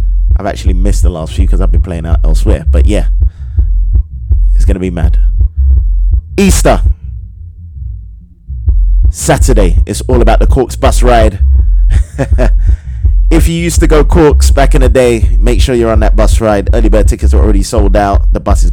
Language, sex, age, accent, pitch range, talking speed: English, male, 20-39, British, 75-95 Hz, 175 wpm